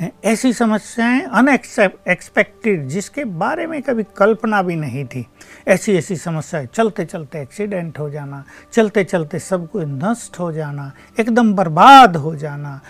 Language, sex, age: Hindi, male, 60-79